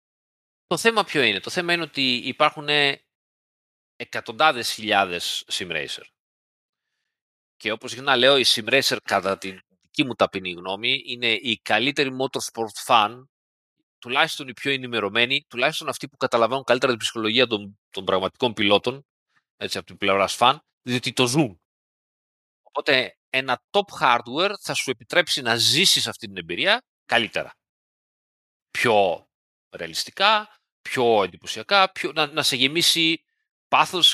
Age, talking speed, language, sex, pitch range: 30-49, 130 wpm, Greek, male, 110-165 Hz